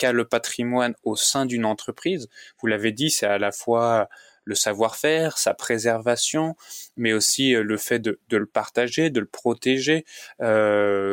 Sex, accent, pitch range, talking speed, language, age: male, French, 110-125 Hz, 155 wpm, French, 20-39